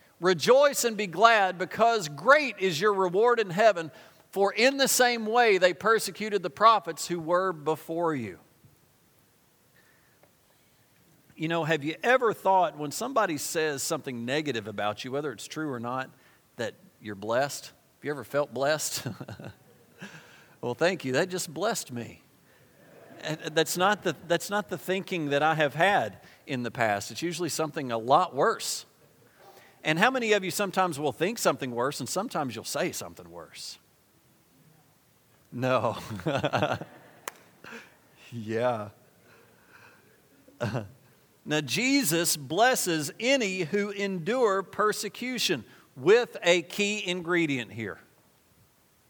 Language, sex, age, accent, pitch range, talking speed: English, male, 50-69, American, 145-200 Hz, 135 wpm